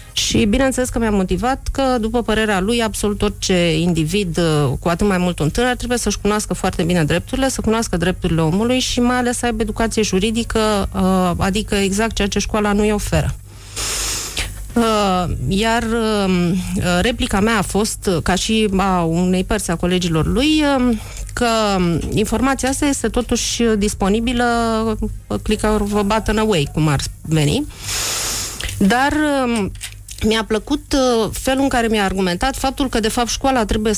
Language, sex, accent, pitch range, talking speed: Romanian, female, native, 185-230 Hz, 145 wpm